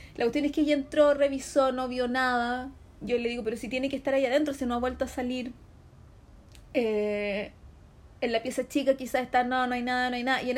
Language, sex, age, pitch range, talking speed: Spanish, female, 30-49, 230-290 Hz, 240 wpm